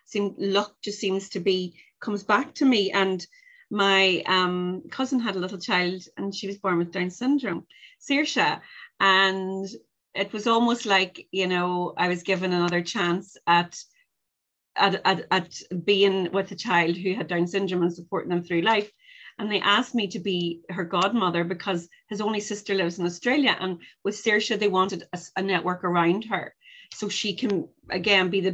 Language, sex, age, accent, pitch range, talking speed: English, female, 30-49, Irish, 180-210 Hz, 180 wpm